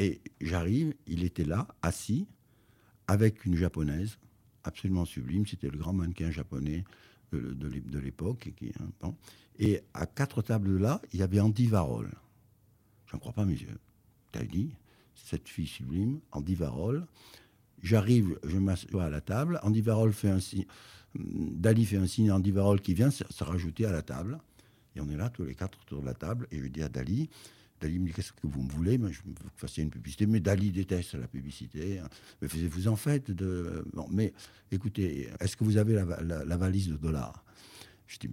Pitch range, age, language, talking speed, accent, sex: 80-110 Hz, 60-79, French, 200 wpm, French, male